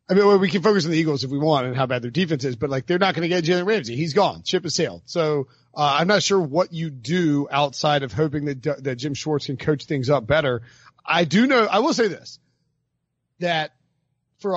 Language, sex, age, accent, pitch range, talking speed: English, male, 40-59, American, 145-185 Hz, 250 wpm